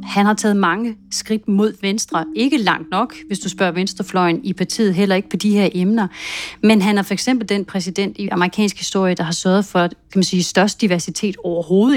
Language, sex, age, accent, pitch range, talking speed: Danish, female, 30-49, native, 185-225 Hz, 210 wpm